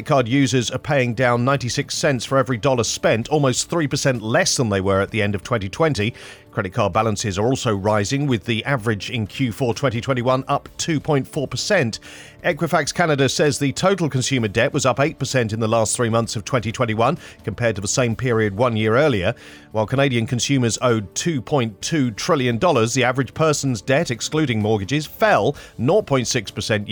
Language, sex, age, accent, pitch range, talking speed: English, male, 40-59, British, 115-150 Hz, 165 wpm